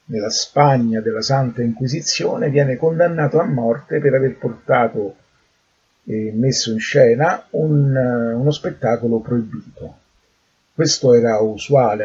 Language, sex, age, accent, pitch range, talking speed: Italian, male, 40-59, native, 120-160 Hz, 110 wpm